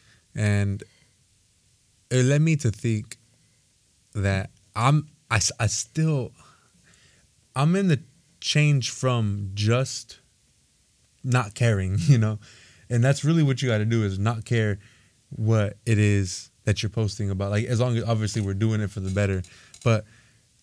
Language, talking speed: English, 150 wpm